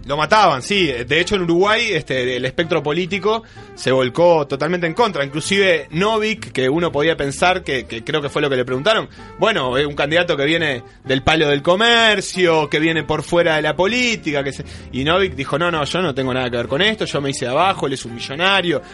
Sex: male